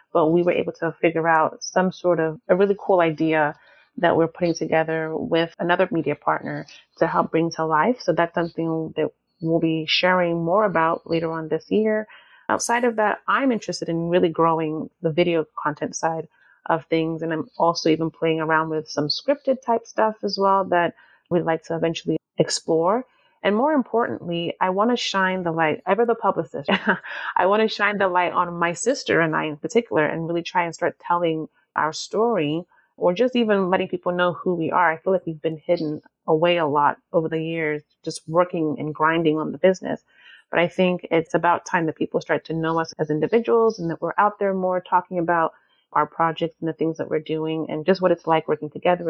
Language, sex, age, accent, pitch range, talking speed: English, female, 30-49, American, 160-185 Hz, 210 wpm